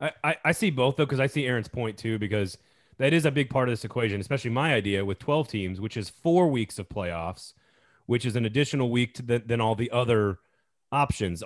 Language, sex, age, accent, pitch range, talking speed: English, male, 30-49, American, 105-140 Hz, 220 wpm